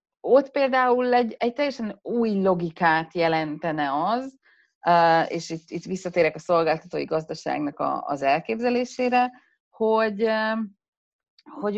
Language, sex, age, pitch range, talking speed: Hungarian, female, 30-49, 175-245 Hz, 105 wpm